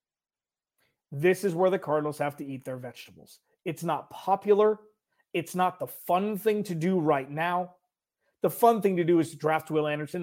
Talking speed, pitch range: 190 wpm, 155-200 Hz